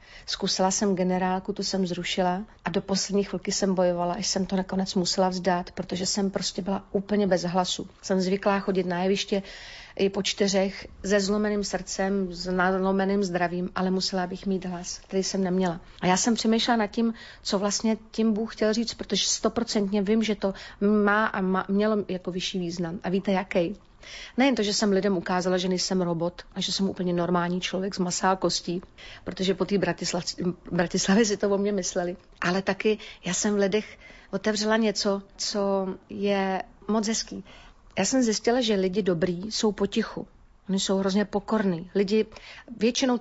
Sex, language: female, Slovak